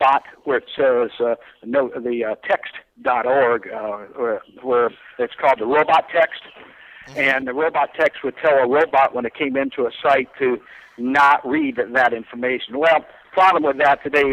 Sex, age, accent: male, 50-69, American